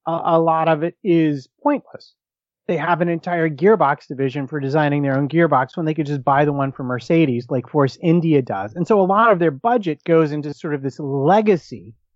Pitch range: 135-170 Hz